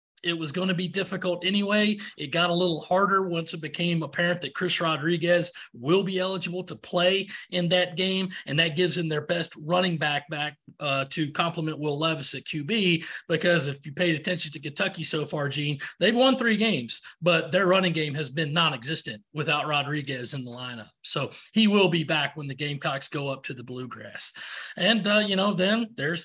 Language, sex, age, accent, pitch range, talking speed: English, male, 30-49, American, 150-180 Hz, 200 wpm